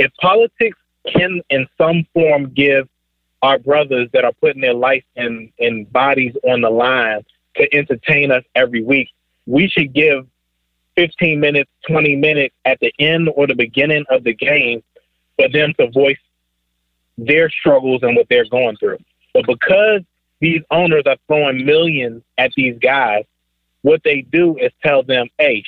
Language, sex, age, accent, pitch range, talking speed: English, male, 30-49, American, 120-160 Hz, 160 wpm